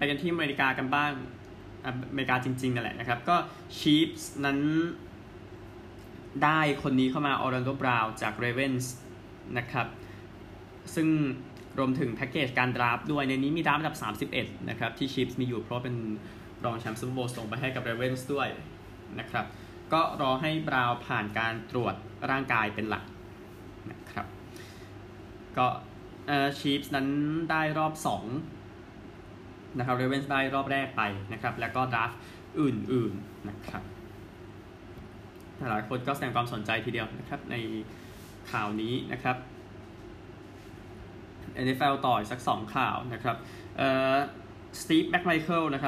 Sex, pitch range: male, 110-135 Hz